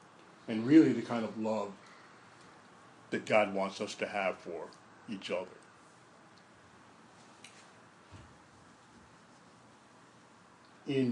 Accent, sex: American, male